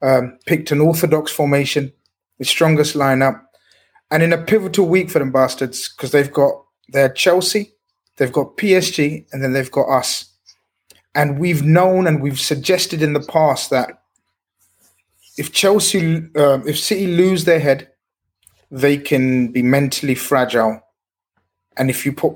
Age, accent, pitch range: 30-49, British, 130-160 Hz